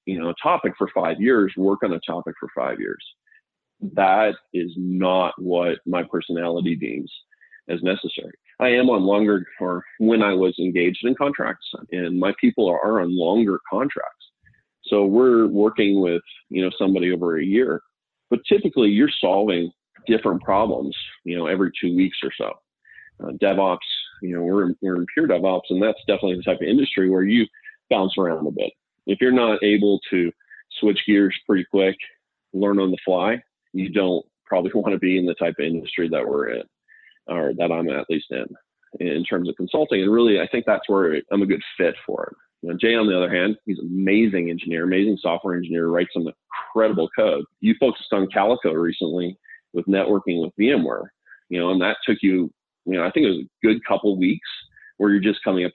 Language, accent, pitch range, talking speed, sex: English, American, 90-105 Hz, 195 wpm, male